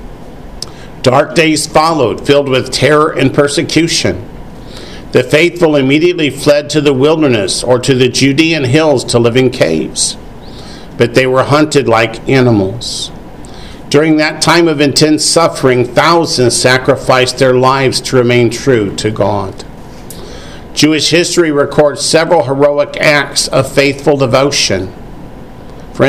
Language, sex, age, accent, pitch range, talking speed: English, male, 50-69, American, 125-155 Hz, 125 wpm